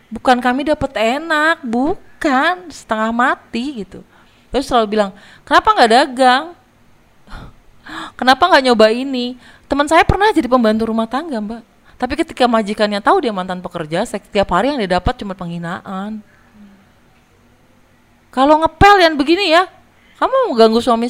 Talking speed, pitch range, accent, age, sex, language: 140 wpm, 175-255 Hz, native, 30-49, female, Indonesian